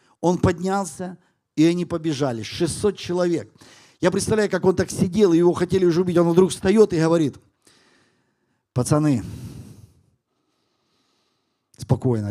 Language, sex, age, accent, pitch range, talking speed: Ukrainian, male, 50-69, native, 120-185 Hz, 120 wpm